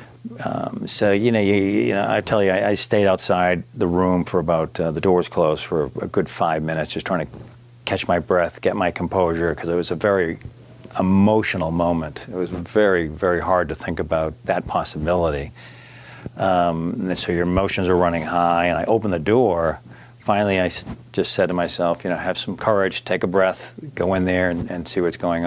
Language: English